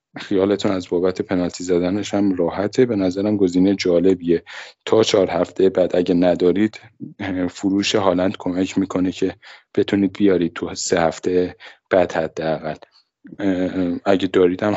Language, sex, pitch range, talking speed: Persian, male, 90-115 Hz, 125 wpm